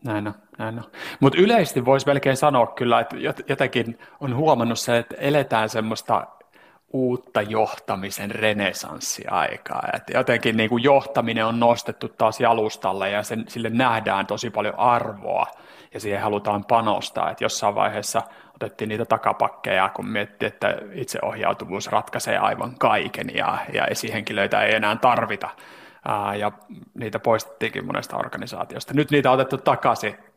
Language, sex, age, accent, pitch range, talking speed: Finnish, male, 30-49, native, 105-125 Hz, 130 wpm